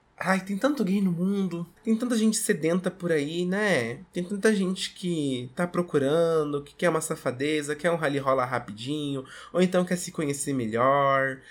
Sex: male